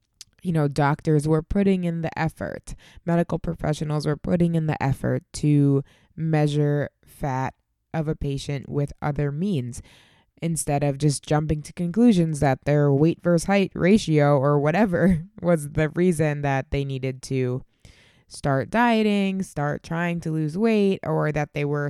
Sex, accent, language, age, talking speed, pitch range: female, American, English, 20-39, 155 wpm, 140-170 Hz